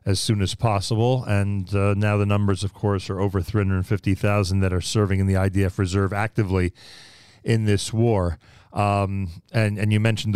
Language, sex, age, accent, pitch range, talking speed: English, male, 40-59, American, 100-115 Hz, 175 wpm